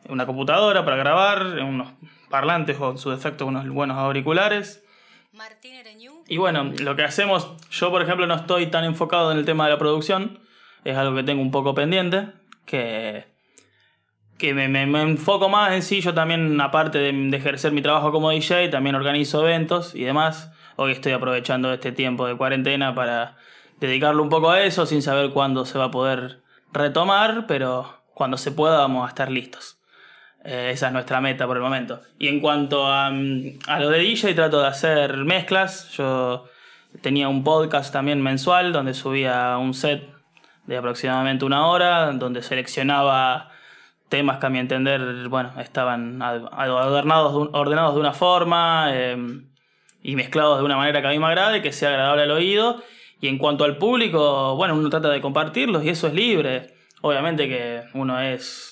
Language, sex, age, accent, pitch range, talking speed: Spanish, male, 20-39, Argentinian, 130-165 Hz, 175 wpm